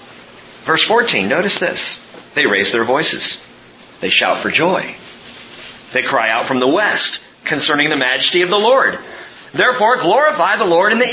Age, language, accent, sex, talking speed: 40-59, English, American, male, 160 wpm